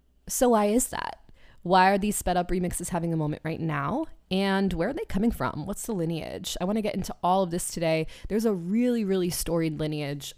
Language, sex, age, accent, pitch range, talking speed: English, female, 20-39, American, 165-210 Hz, 225 wpm